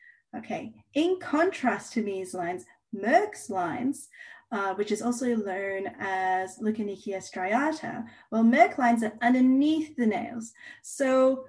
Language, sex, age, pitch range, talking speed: English, female, 10-29, 200-245 Hz, 125 wpm